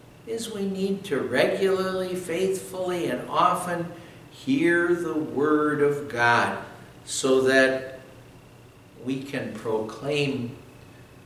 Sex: male